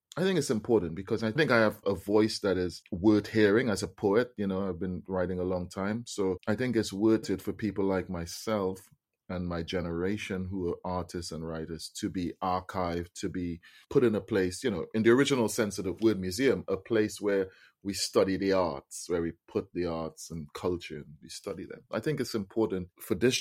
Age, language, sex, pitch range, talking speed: 30-49, English, male, 90-105 Hz, 225 wpm